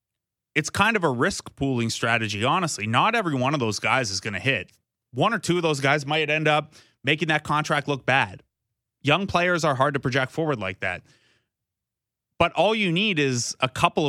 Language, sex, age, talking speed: English, male, 30-49, 205 wpm